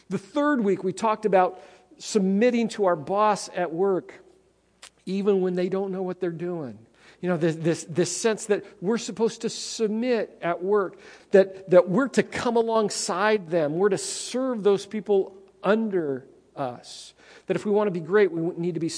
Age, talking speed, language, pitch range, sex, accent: 50-69, 180 wpm, English, 170-215 Hz, male, American